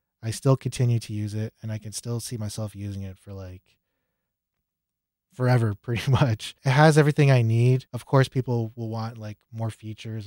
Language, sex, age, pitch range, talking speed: English, male, 20-39, 100-120 Hz, 185 wpm